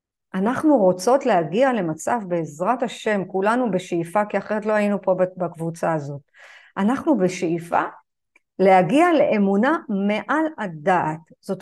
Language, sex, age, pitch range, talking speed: Hebrew, female, 50-69, 185-255 Hz, 115 wpm